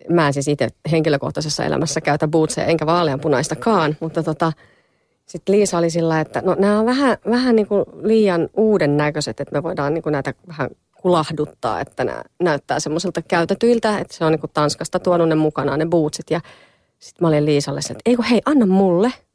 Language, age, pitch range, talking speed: Finnish, 30-49, 150-180 Hz, 175 wpm